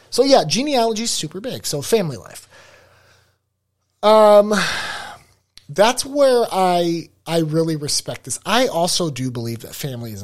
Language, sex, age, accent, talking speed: English, male, 30-49, American, 140 wpm